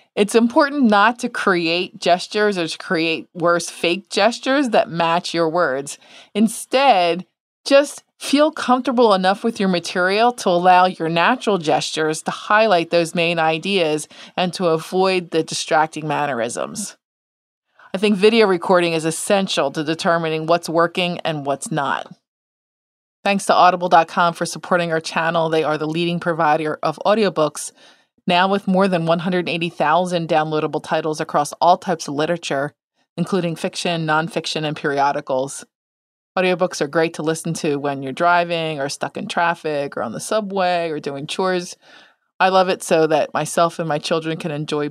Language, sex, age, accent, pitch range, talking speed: English, female, 20-39, American, 160-190 Hz, 155 wpm